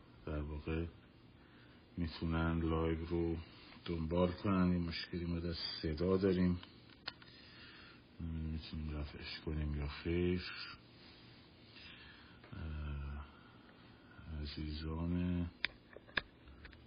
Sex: male